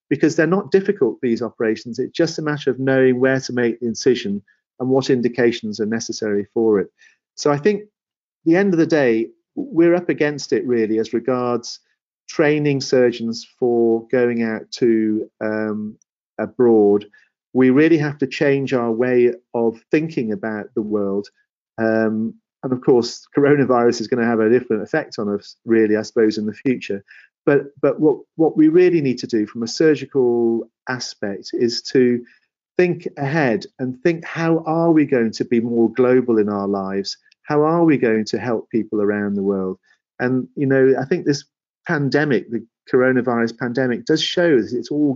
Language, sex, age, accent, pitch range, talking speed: English, male, 40-59, British, 115-150 Hz, 180 wpm